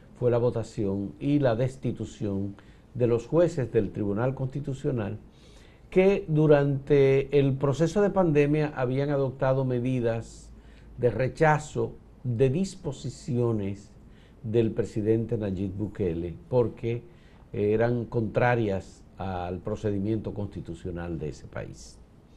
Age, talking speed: 50-69, 100 wpm